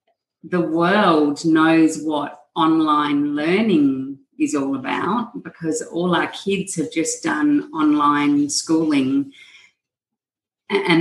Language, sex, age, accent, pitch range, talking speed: English, female, 40-59, Australian, 160-195 Hz, 105 wpm